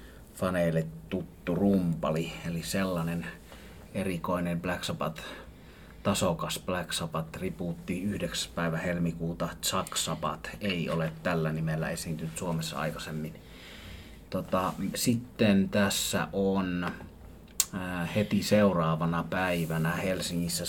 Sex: male